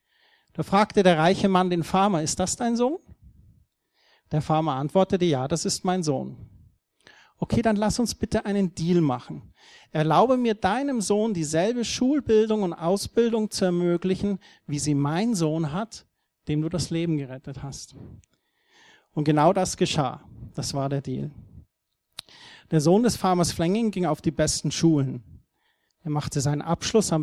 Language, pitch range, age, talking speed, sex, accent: German, 150-195 Hz, 40-59, 155 wpm, male, German